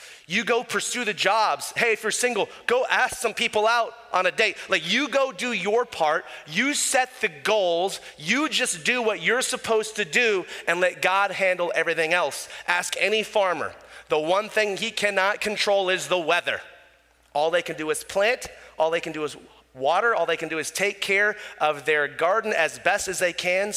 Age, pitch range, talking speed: 30-49, 155-215 Hz, 200 wpm